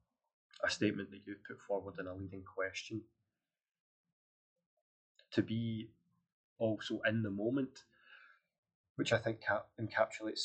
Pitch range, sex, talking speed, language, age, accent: 100-120 Hz, male, 115 wpm, English, 20-39, British